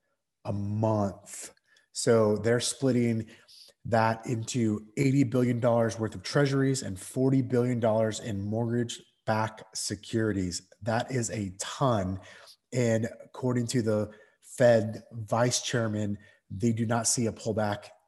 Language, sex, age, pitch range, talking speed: English, male, 30-49, 105-125 Hz, 115 wpm